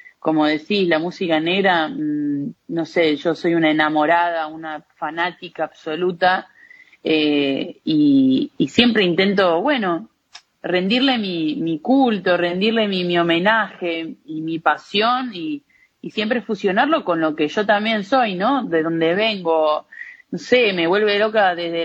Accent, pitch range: Argentinian, 160-225 Hz